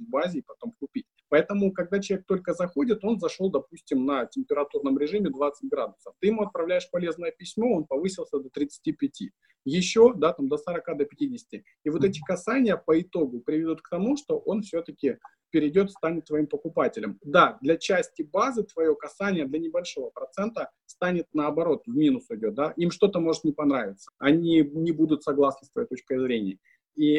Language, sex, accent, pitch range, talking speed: Russian, male, native, 145-220 Hz, 170 wpm